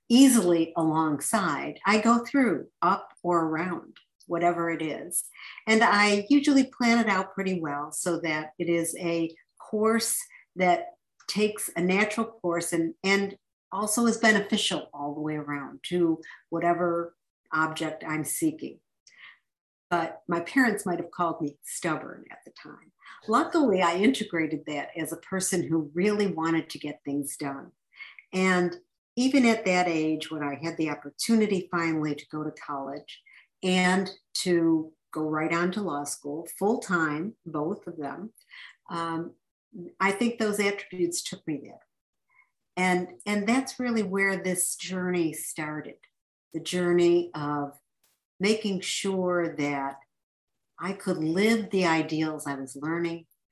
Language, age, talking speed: English, 50-69, 140 wpm